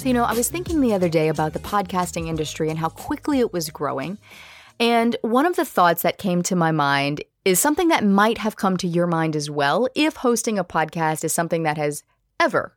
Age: 30-49